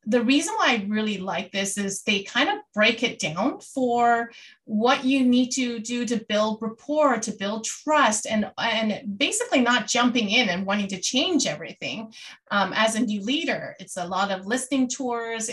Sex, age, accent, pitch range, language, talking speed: female, 30-49, American, 210-275 Hz, English, 185 wpm